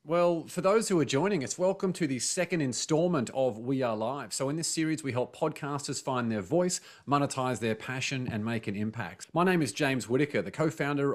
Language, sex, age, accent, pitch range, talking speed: English, male, 30-49, Australian, 105-135 Hz, 220 wpm